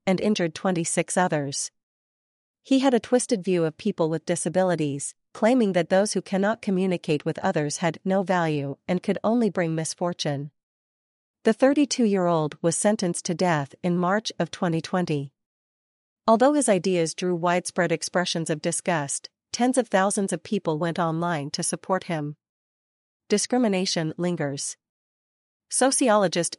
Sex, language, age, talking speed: female, English, 40-59, 135 wpm